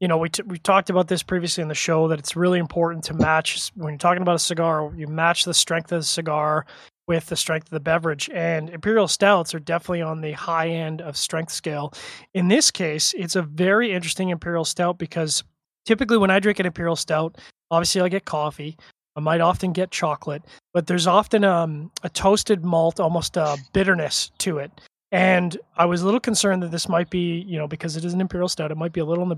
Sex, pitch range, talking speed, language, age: male, 160-185 Hz, 230 wpm, English, 20-39